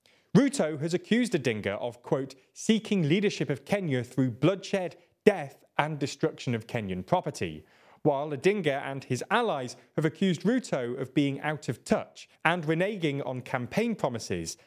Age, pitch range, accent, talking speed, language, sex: 30-49, 120-165 Hz, British, 145 wpm, English, male